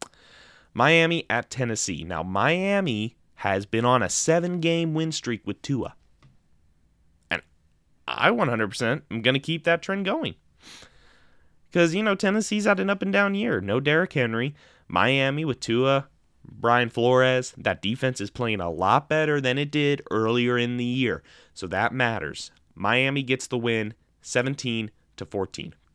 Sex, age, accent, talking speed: male, 20-39, American, 145 wpm